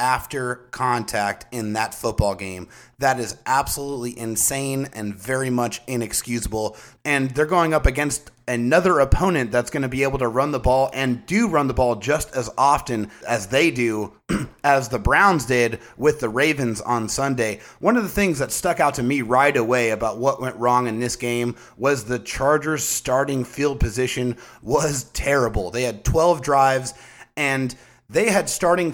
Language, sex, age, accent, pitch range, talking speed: English, male, 30-49, American, 120-150 Hz, 175 wpm